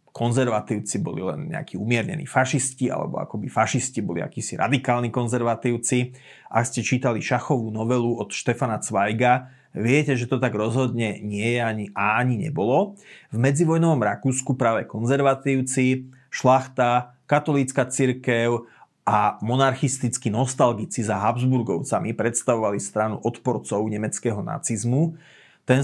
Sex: male